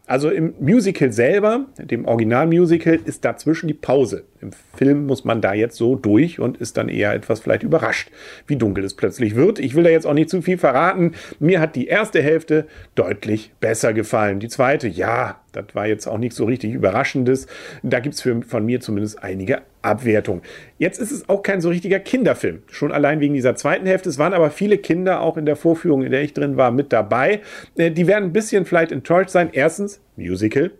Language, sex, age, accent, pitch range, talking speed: German, male, 40-59, German, 115-165 Hz, 205 wpm